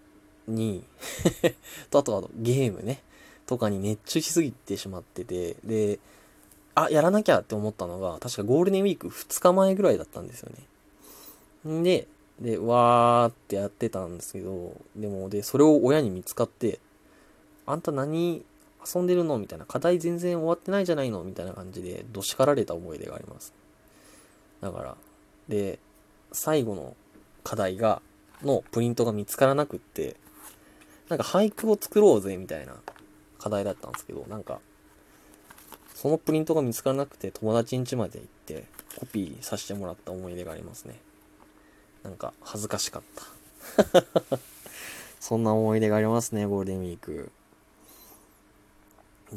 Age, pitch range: 20-39, 100-150 Hz